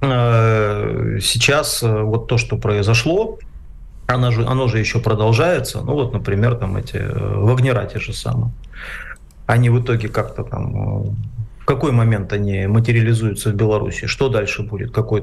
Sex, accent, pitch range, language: male, native, 100-120 Hz, Russian